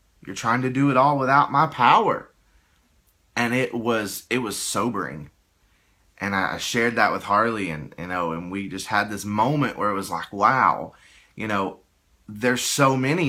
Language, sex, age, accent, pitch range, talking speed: English, male, 30-49, American, 105-140 Hz, 180 wpm